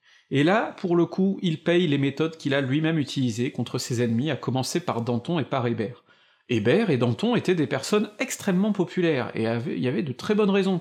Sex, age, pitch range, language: male, 40-59, 120-160 Hz, French